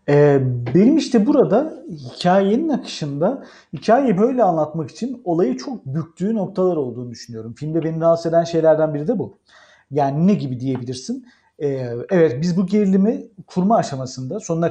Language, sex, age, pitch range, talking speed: Turkish, male, 40-59, 135-200 Hz, 140 wpm